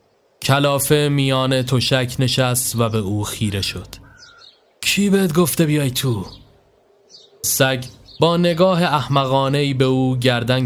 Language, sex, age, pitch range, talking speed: Persian, male, 20-39, 115-145 Hz, 120 wpm